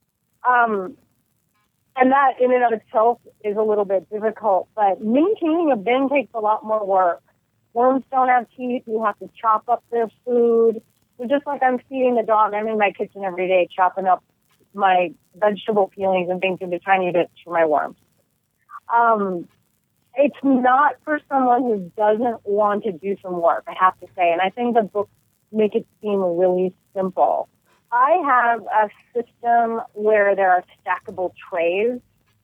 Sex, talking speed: female, 170 wpm